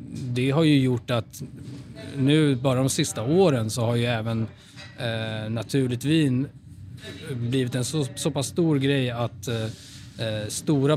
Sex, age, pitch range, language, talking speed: male, 20-39, 115-135 Hz, English, 130 wpm